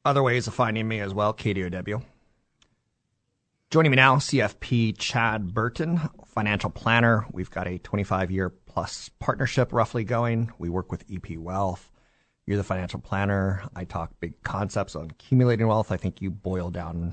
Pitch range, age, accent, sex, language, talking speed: 90-115 Hz, 30-49, American, male, English, 160 wpm